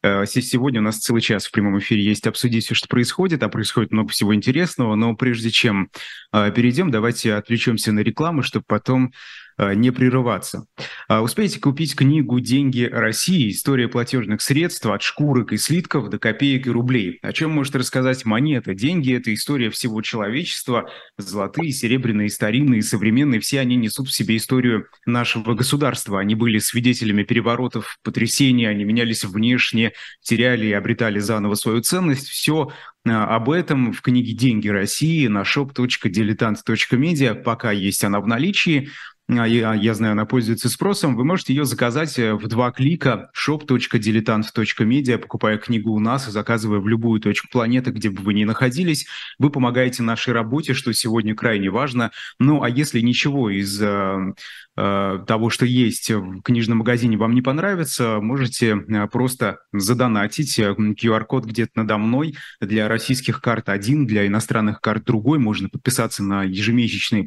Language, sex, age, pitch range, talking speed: Russian, male, 20-39, 110-130 Hz, 150 wpm